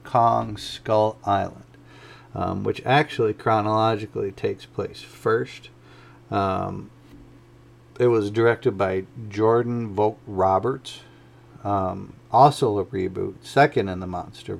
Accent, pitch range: American, 100-120 Hz